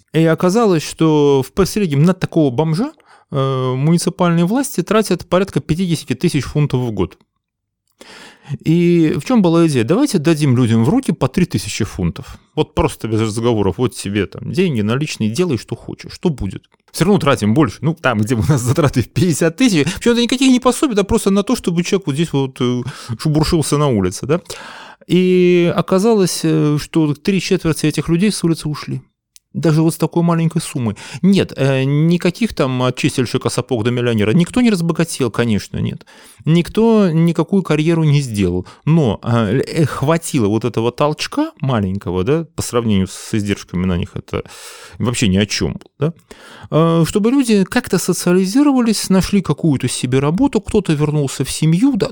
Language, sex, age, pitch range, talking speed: Russian, male, 30-49, 125-180 Hz, 160 wpm